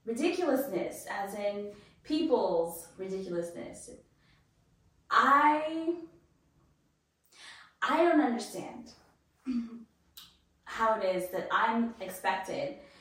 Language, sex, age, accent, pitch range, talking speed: English, female, 10-29, American, 210-265 Hz, 70 wpm